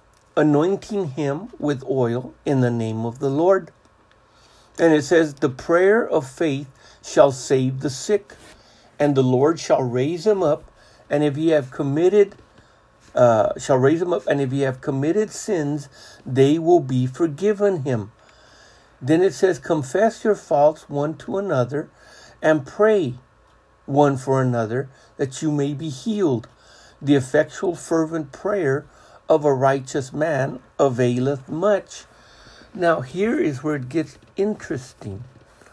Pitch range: 130-170 Hz